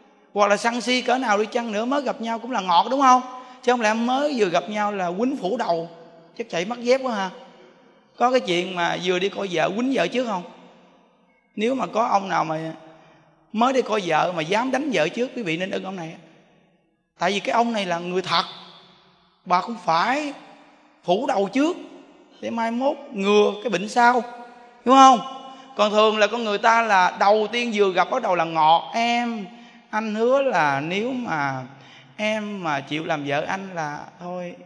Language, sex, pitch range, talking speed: Vietnamese, male, 180-245 Hz, 205 wpm